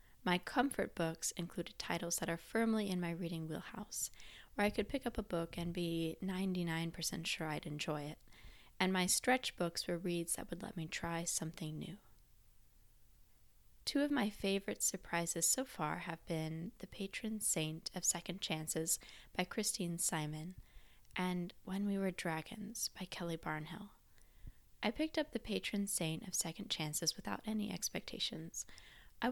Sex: female